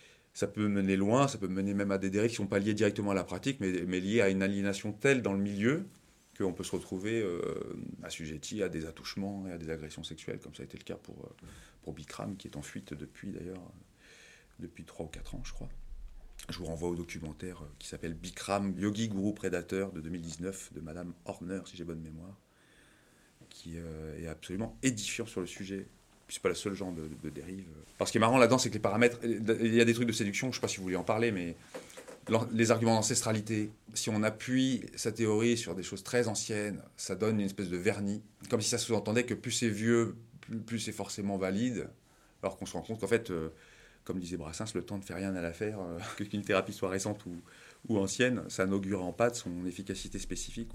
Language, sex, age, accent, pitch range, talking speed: French, male, 30-49, French, 90-110 Hz, 230 wpm